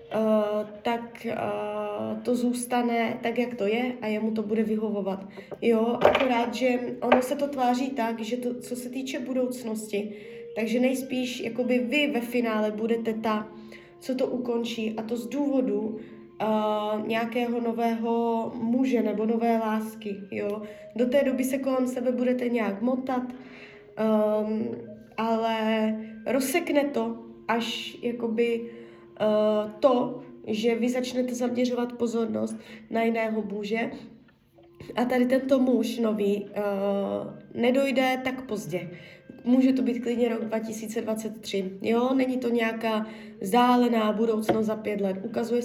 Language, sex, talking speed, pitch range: Czech, female, 120 wpm, 215-245 Hz